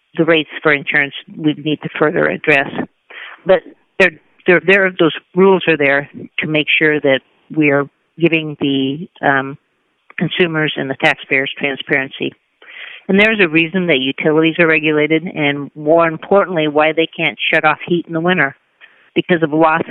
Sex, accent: female, American